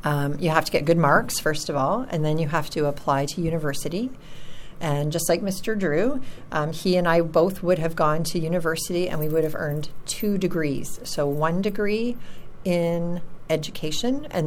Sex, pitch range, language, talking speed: female, 155-185 Hz, English, 190 wpm